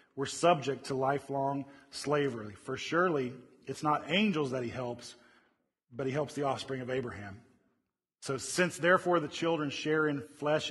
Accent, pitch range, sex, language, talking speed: American, 145-195 Hz, male, English, 155 wpm